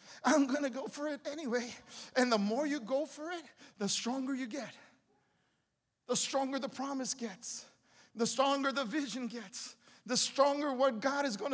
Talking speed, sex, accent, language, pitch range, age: 175 wpm, male, American, English, 190-275 Hz, 50-69